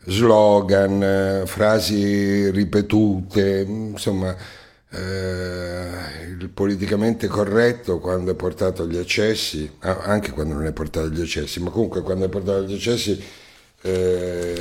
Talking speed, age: 115 wpm, 60-79